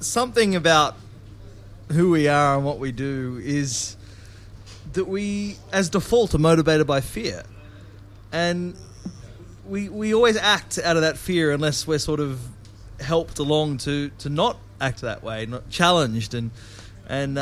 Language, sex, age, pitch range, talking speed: English, male, 20-39, 110-155 Hz, 150 wpm